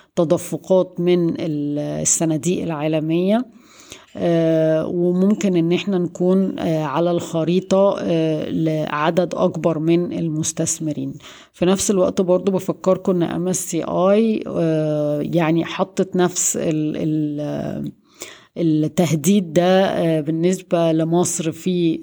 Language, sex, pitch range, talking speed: Arabic, female, 160-185 Hz, 80 wpm